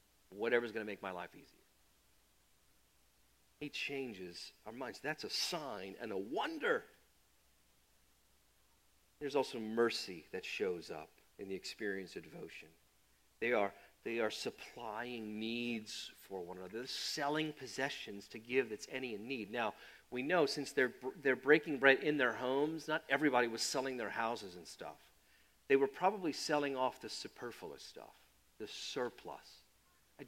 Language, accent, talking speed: English, American, 150 wpm